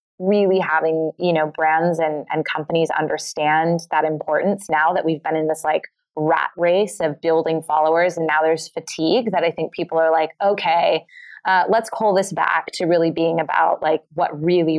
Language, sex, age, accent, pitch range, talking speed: English, female, 20-39, American, 155-175 Hz, 185 wpm